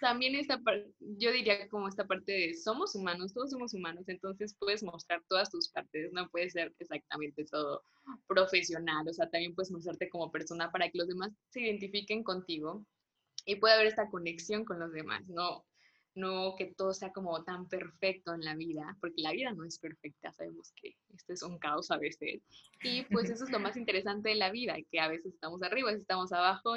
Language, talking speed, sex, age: Spanish, 205 wpm, female, 10-29